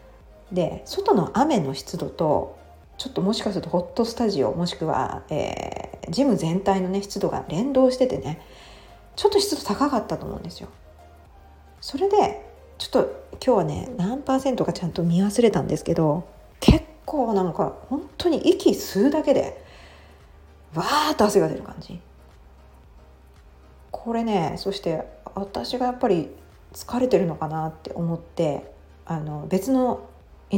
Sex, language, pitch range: female, Japanese, 160-260 Hz